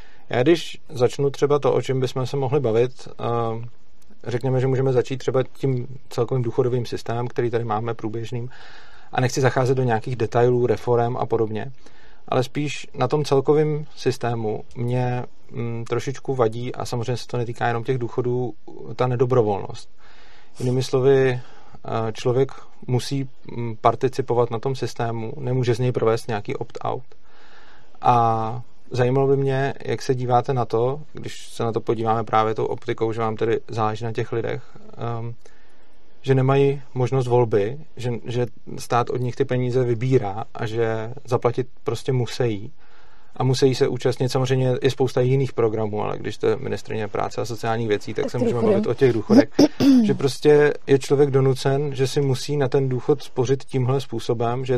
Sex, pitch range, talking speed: male, 120-135 Hz, 160 wpm